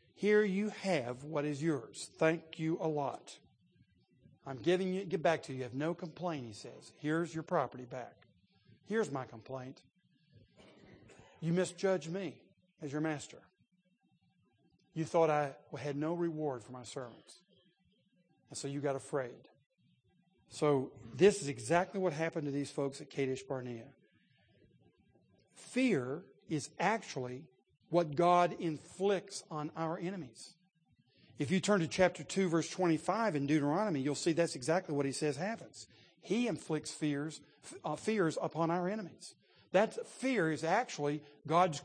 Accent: American